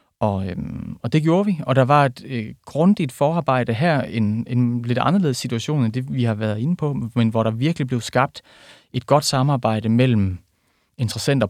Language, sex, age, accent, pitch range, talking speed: Danish, male, 30-49, native, 105-125 Hz, 195 wpm